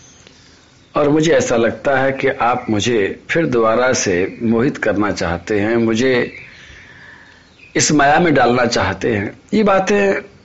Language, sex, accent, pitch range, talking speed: Hindi, male, native, 130-195 Hz, 140 wpm